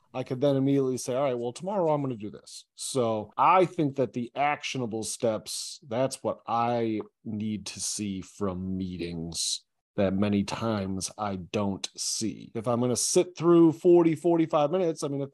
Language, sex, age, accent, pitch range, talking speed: English, male, 30-49, American, 115-165 Hz, 185 wpm